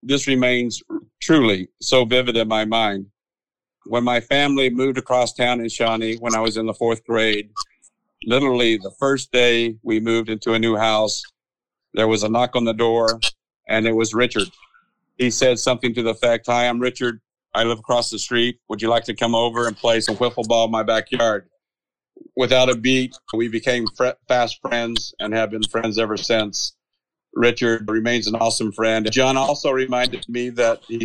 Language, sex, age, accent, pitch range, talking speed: English, male, 50-69, American, 110-125 Hz, 185 wpm